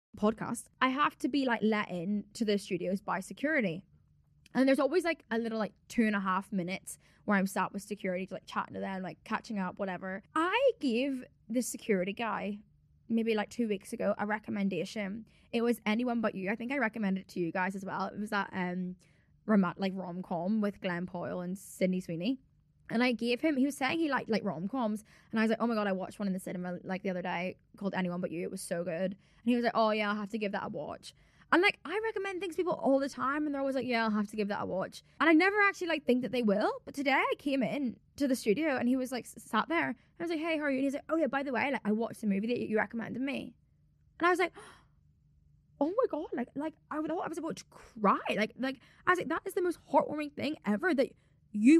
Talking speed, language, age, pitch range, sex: 260 wpm, English, 10-29, 205-280 Hz, female